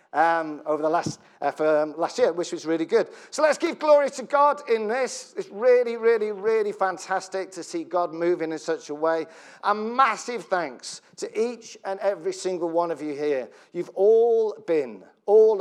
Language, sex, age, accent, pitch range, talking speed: English, male, 40-59, British, 150-215 Hz, 190 wpm